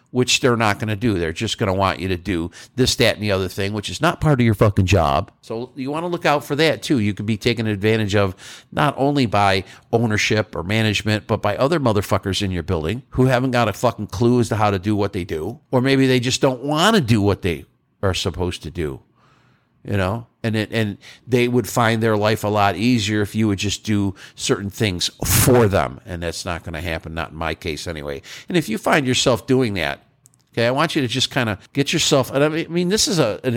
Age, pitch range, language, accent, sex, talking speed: 50-69, 95-125 Hz, English, American, male, 250 wpm